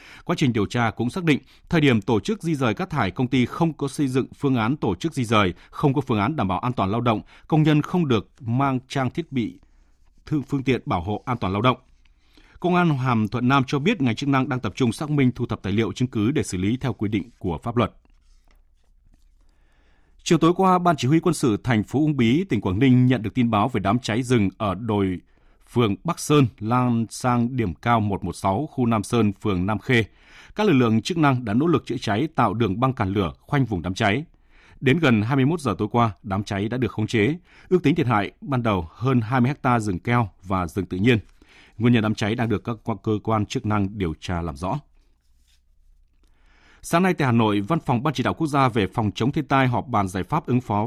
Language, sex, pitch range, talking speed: Vietnamese, male, 100-130 Hz, 245 wpm